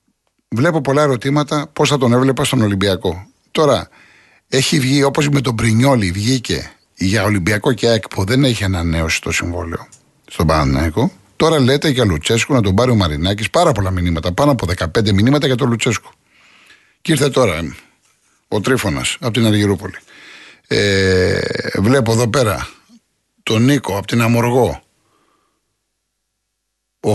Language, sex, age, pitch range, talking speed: Greek, male, 50-69, 100-145 Hz, 145 wpm